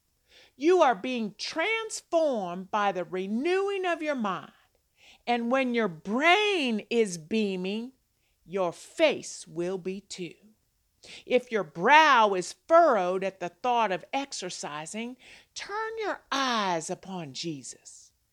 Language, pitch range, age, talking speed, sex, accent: English, 200-310 Hz, 50-69, 120 wpm, female, American